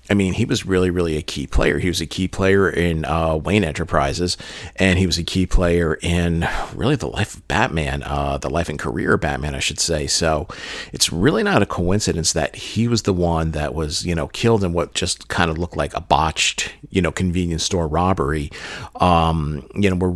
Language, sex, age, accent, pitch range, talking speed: English, male, 40-59, American, 80-95 Hz, 220 wpm